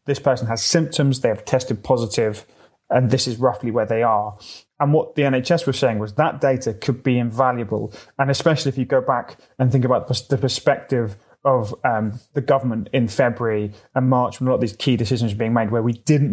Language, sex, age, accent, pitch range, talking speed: English, male, 20-39, British, 110-130 Hz, 215 wpm